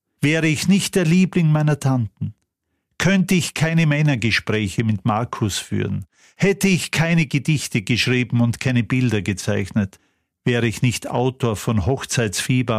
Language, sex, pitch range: German, male, 105-155 Hz